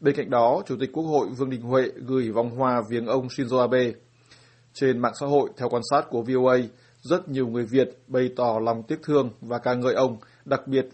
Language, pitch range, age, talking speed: Vietnamese, 120-130 Hz, 20-39, 225 wpm